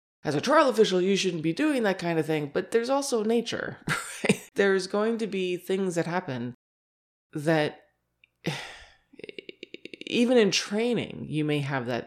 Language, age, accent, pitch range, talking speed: English, 20-39, American, 145-190 Hz, 155 wpm